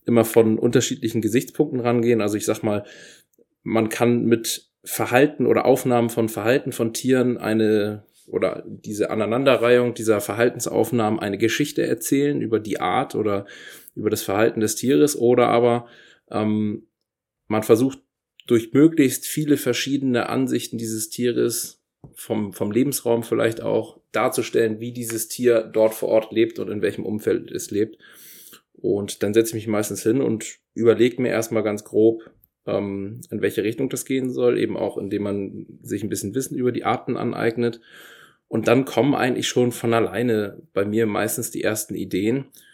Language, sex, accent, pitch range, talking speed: German, male, German, 110-125 Hz, 155 wpm